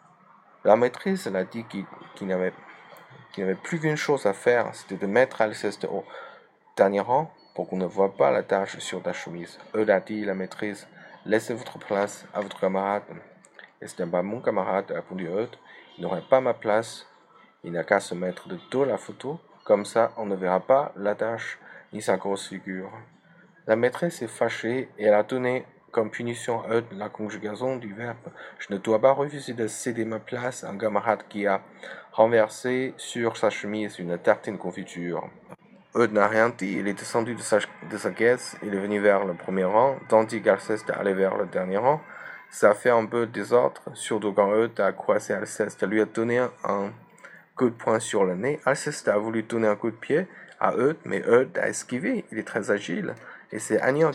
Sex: male